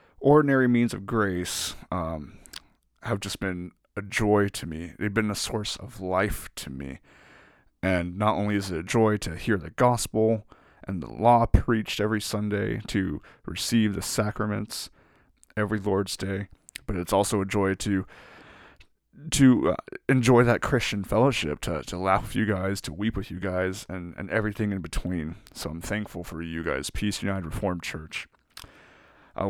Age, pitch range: 20-39, 90-110 Hz